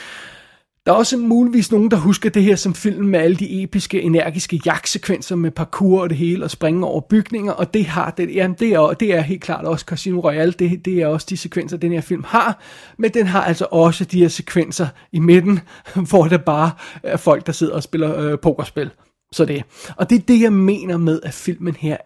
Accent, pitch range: native, 165-195 Hz